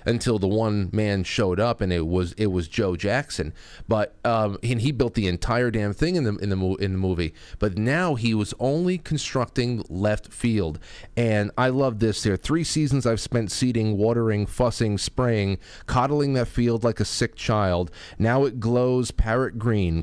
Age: 30-49